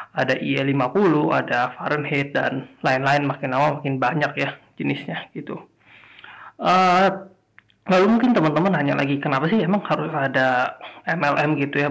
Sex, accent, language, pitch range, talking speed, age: male, native, Indonesian, 140-185 Hz, 135 wpm, 20-39